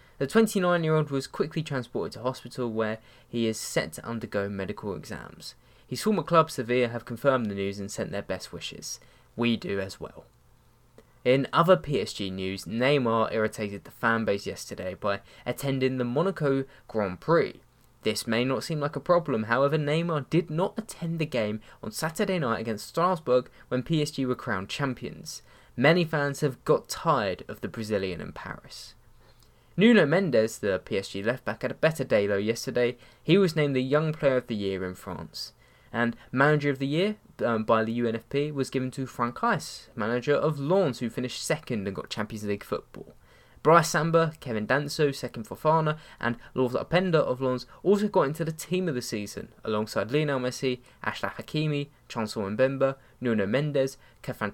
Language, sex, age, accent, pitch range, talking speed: English, male, 10-29, British, 110-145 Hz, 175 wpm